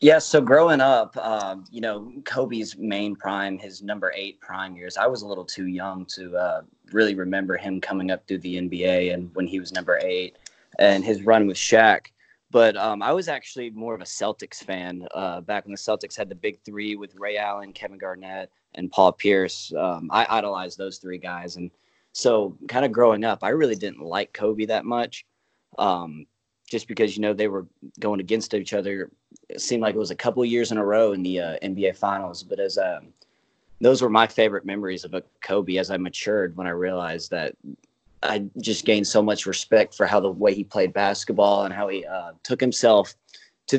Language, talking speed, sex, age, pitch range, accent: English, 210 wpm, male, 20-39, 95-110 Hz, American